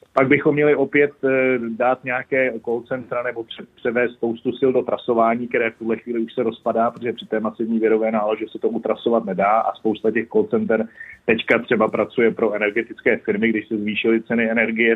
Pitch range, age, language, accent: 110-130 Hz, 40-59, Czech, native